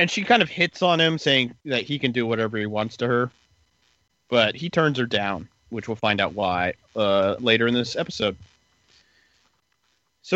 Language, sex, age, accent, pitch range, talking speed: English, male, 30-49, American, 100-130 Hz, 190 wpm